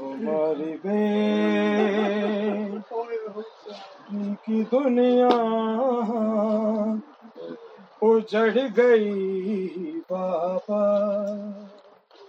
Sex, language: male, Urdu